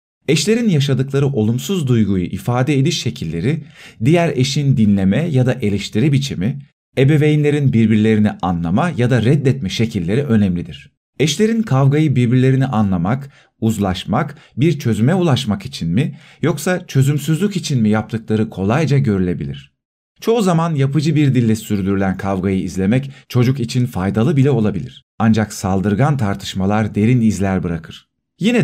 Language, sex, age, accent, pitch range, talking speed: Turkish, male, 40-59, native, 100-140 Hz, 125 wpm